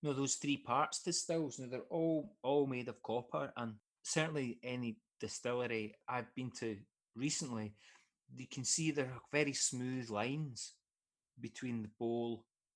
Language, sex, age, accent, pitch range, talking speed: English, male, 30-49, British, 110-130 Hz, 160 wpm